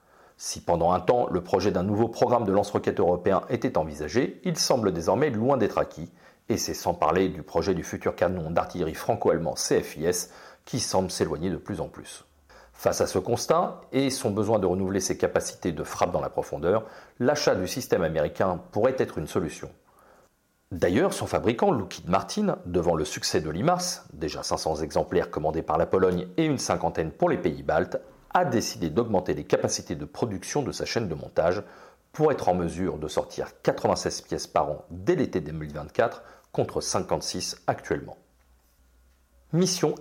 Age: 40-59